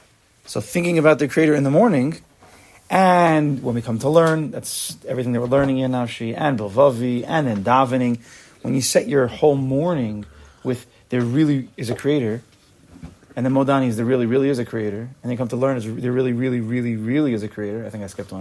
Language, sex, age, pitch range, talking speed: English, male, 30-49, 115-150 Hz, 220 wpm